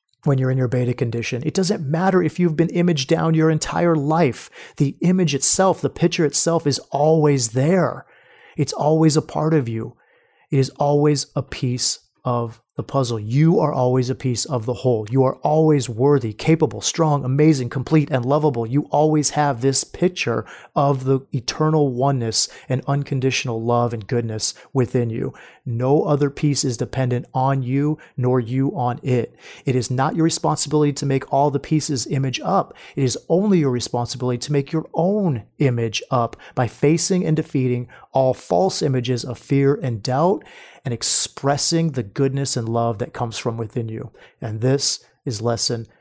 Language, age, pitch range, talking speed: English, 30-49, 125-160 Hz, 175 wpm